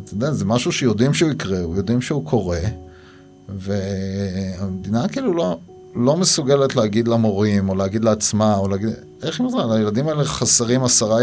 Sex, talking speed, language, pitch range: male, 135 wpm, Hebrew, 100-130 Hz